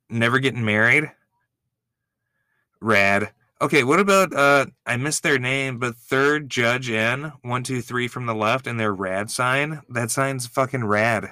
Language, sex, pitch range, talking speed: English, male, 110-135 Hz, 160 wpm